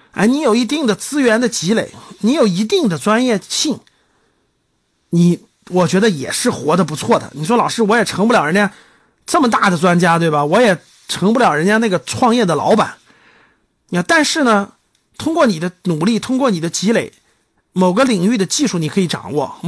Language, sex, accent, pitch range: Chinese, male, native, 180-245 Hz